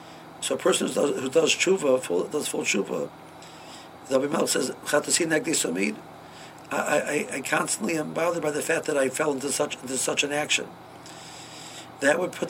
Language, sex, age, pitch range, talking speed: English, male, 60-79, 130-150 Hz, 180 wpm